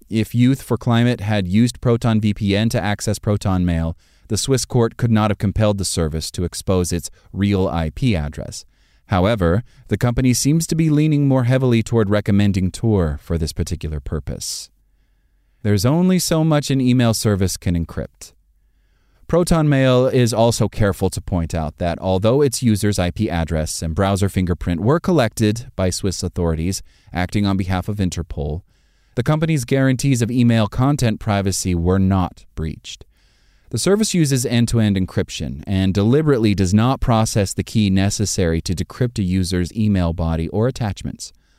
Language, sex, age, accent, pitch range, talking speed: English, male, 30-49, American, 90-120 Hz, 155 wpm